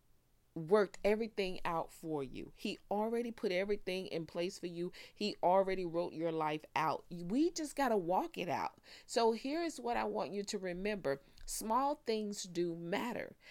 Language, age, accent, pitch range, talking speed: English, 40-59, American, 175-225 Hz, 170 wpm